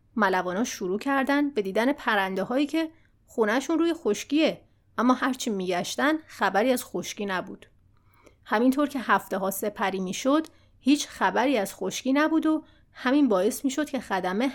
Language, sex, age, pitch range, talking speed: Persian, female, 30-49, 205-280 Hz, 145 wpm